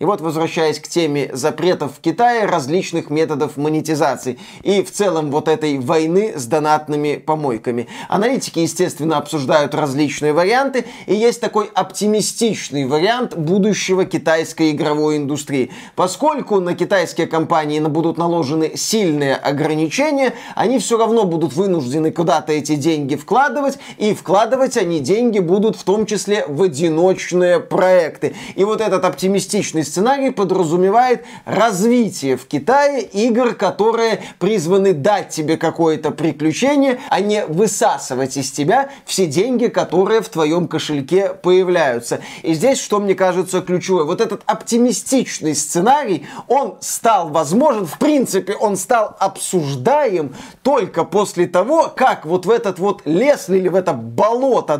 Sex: male